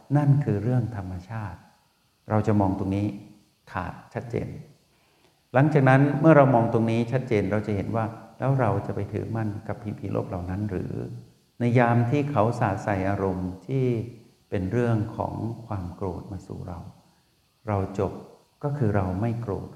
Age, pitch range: 60-79, 100-120 Hz